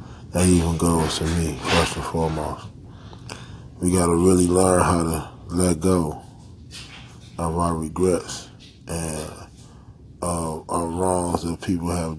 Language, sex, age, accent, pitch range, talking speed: English, male, 20-39, American, 85-95 Hz, 135 wpm